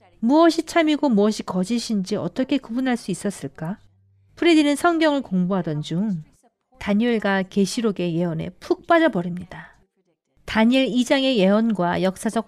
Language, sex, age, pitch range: Korean, female, 40-59, 190-280 Hz